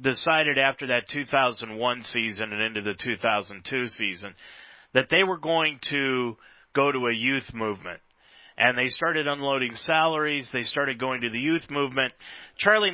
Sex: male